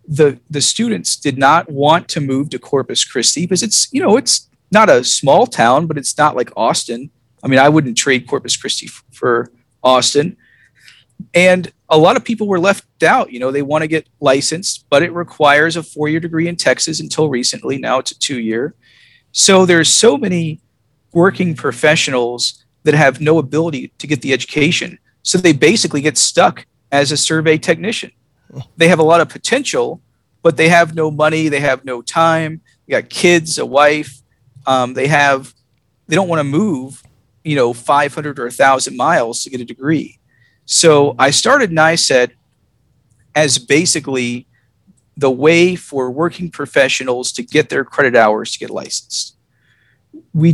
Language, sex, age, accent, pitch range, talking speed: English, male, 40-59, American, 130-160 Hz, 170 wpm